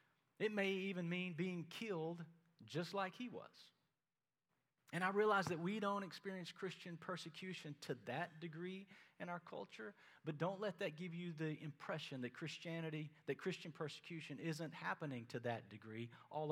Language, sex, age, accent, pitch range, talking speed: English, male, 40-59, American, 145-185 Hz, 160 wpm